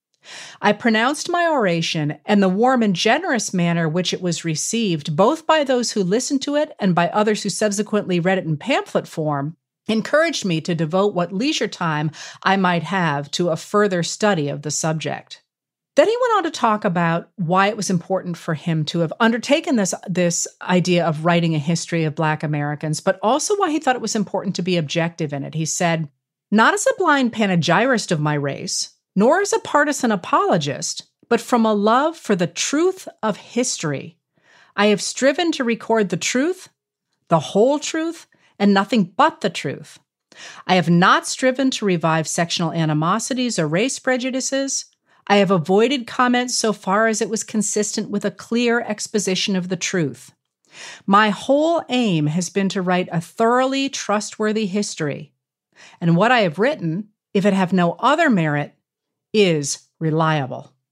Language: English